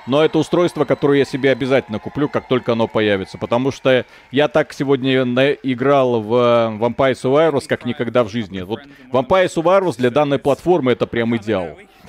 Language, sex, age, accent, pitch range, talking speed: Russian, male, 40-59, native, 130-160 Hz, 170 wpm